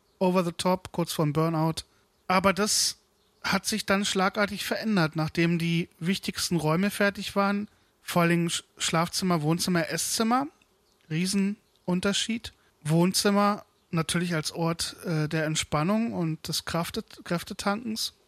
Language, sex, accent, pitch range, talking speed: German, male, German, 165-205 Hz, 120 wpm